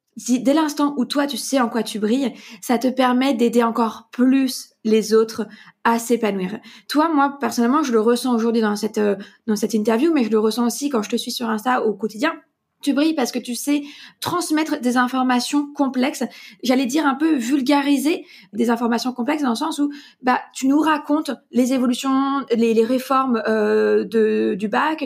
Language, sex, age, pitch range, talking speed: French, female, 20-39, 230-285 Hz, 190 wpm